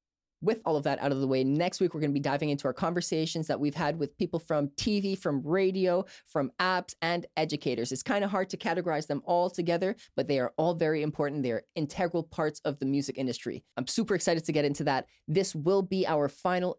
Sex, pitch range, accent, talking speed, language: female, 150-185 Hz, American, 230 wpm, English